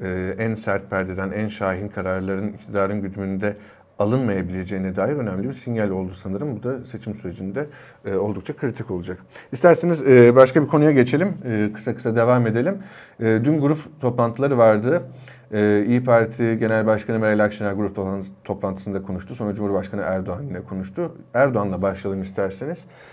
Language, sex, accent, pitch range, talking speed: Turkish, male, native, 105-130 Hz, 150 wpm